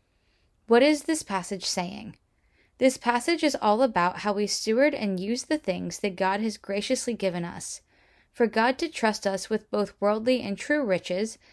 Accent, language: American, English